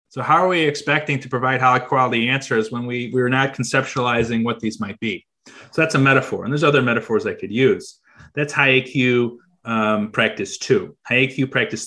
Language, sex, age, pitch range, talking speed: English, male, 30-49, 115-140 Hz, 170 wpm